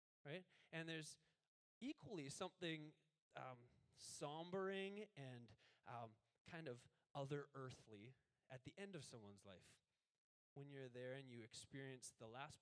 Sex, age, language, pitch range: male, 20-39, English, 120-160 Hz